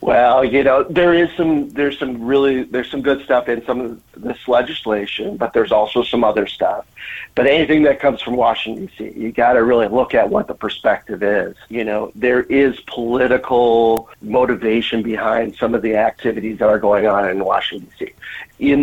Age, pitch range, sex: 50-69, 115-135 Hz, male